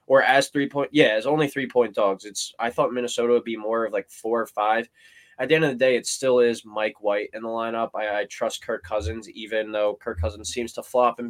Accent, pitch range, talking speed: American, 110-125 Hz, 260 wpm